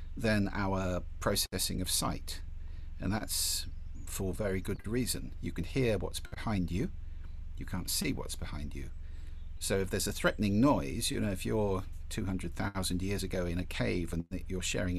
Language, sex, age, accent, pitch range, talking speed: English, male, 50-69, British, 80-95 Hz, 170 wpm